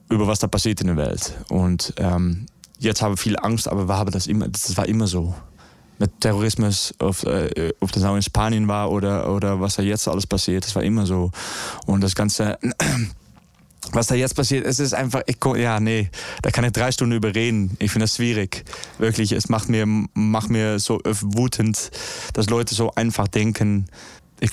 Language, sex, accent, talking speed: German, male, German, 205 wpm